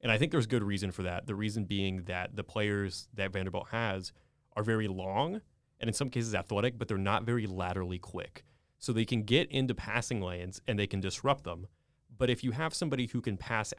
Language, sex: English, male